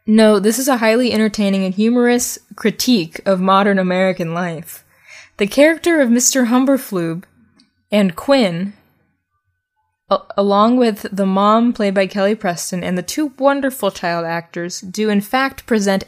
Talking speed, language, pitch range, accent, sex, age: 140 wpm, English, 185-240 Hz, American, female, 10-29